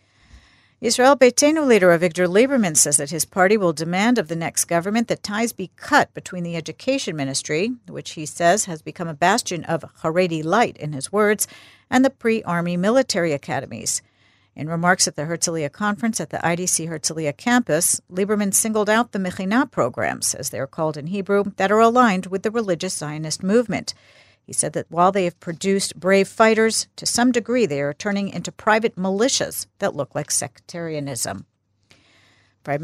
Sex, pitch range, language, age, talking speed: female, 150-210 Hz, English, 50-69, 175 wpm